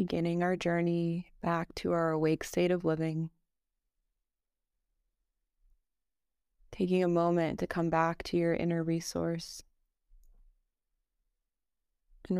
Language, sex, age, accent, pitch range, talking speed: English, female, 20-39, American, 160-175 Hz, 100 wpm